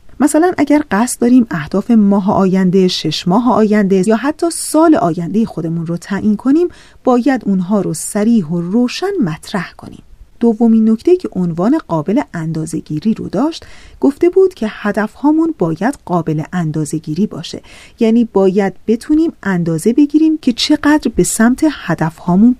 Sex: female